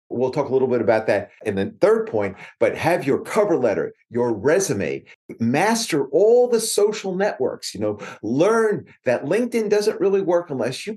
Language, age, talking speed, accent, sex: English, 40-59, 180 wpm, American, male